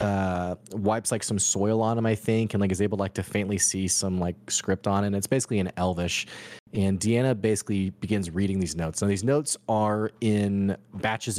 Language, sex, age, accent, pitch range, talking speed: English, male, 30-49, American, 100-125 Hz, 205 wpm